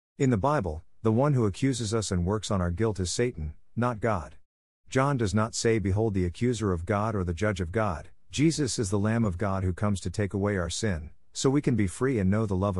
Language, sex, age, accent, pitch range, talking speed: English, male, 50-69, American, 90-115 Hz, 250 wpm